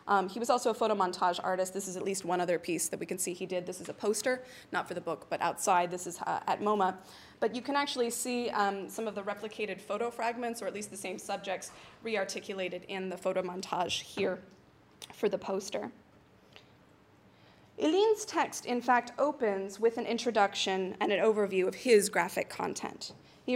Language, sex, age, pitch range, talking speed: English, female, 20-39, 190-255 Hz, 200 wpm